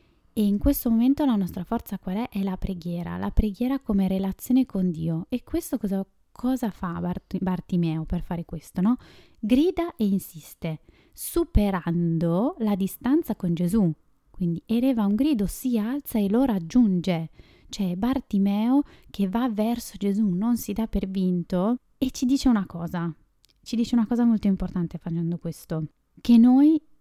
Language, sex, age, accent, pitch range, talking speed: Italian, female, 20-39, native, 175-235 Hz, 160 wpm